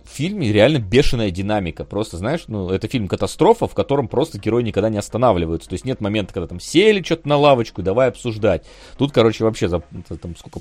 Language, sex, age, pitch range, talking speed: Russian, male, 30-49, 100-130 Hz, 200 wpm